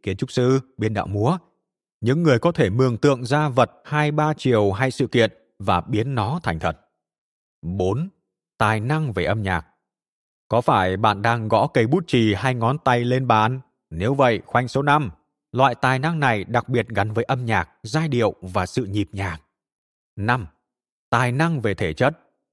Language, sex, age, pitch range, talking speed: Vietnamese, male, 20-39, 105-140 Hz, 190 wpm